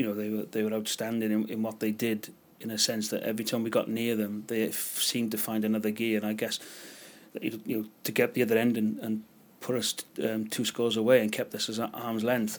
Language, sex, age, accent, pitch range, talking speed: English, male, 30-49, British, 110-125 Hz, 255 wpm